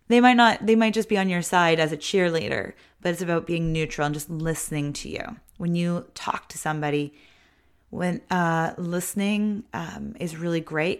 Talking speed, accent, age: 190 wpm, American, 20-39